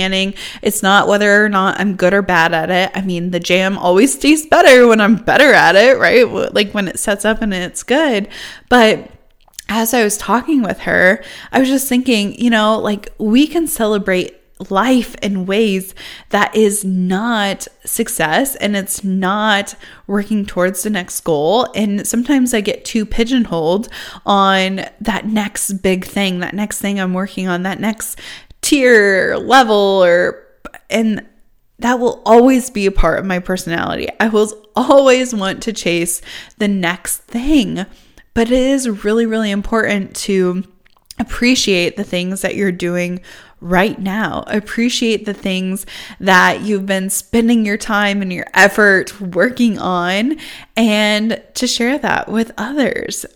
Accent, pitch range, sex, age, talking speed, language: American, 190-230 Hz, female, 20-39, 155 wpm, English